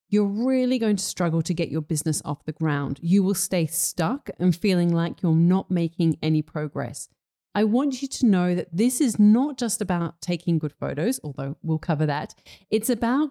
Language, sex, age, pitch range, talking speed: English, female, 40-59, 160-210 Hz, 200 wpm